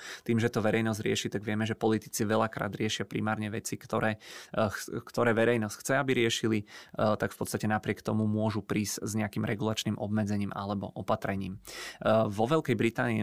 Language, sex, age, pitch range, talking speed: Czech, male, 20-39, 105-115 Hz, 165 wpm